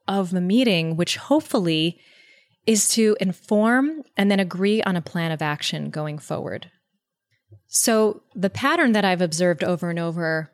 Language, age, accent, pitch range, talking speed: English, 20-39, American, 165-210 Hz, 155 wpm